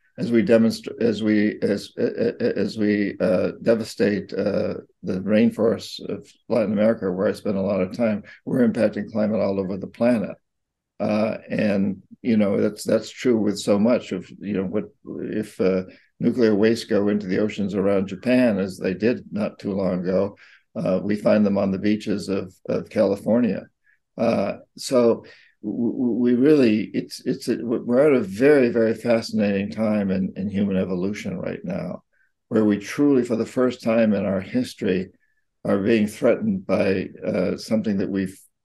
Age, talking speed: 50-69, 170 wpm